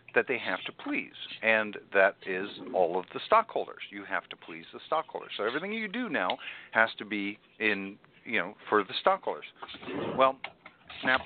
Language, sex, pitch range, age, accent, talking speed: English, male, 115-145 Hz, 50-69, American, 180 wpm